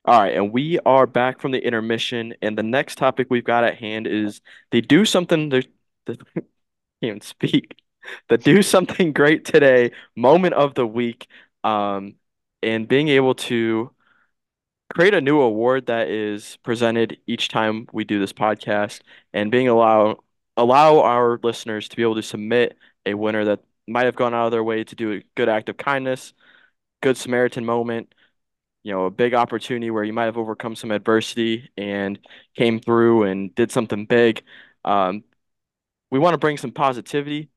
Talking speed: 175 wpm